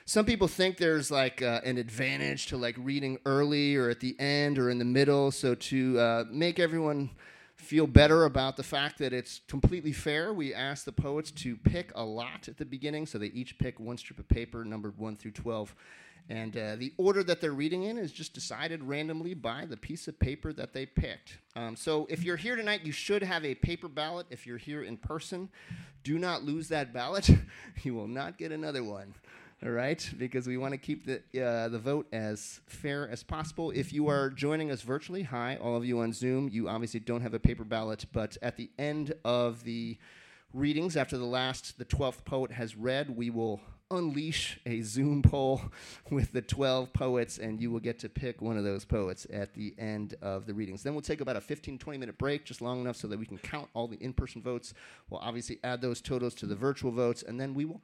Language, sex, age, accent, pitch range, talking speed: English, male, 30-49, American, 115-150 Hz, 220 wpm